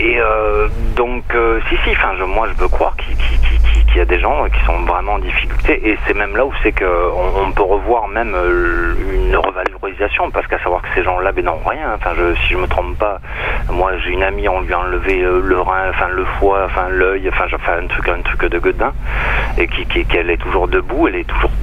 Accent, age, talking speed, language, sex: French, 40-59, 230 wpm, French, male